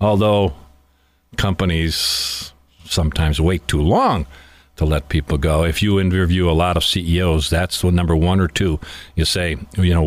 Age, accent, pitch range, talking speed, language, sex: 50-69, American, 80-130 Hz, 160 wpm, English, male